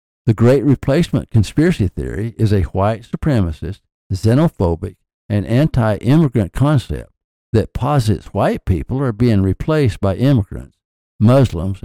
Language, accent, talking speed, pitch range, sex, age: English, American, 115 wpm, 95-125 Hz, male, 60-79